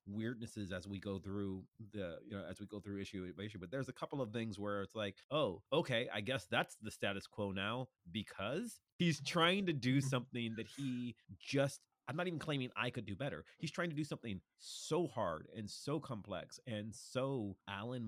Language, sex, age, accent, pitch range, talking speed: English, male, 30-49, American, 100-125 Hz, 210 wpm